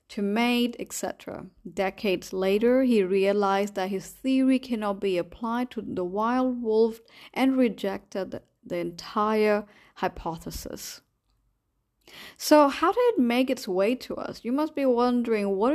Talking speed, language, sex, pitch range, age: 135 wpm, English, female, 195-250 Hz, 30-49